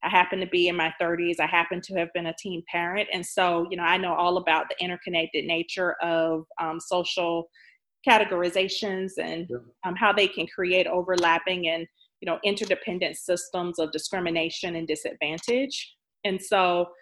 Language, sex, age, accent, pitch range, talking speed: English, female, 30-49, American, 175-200 Hz, 170 wpm